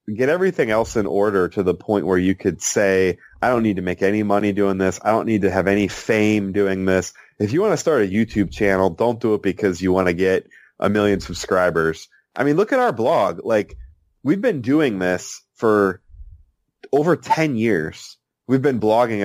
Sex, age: male, 30-49